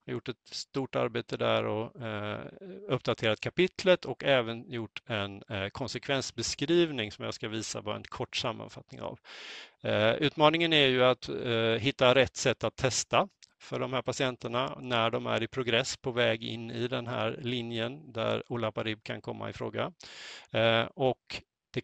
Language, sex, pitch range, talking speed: Swedish, male, 110-130 Hz, 170 wpm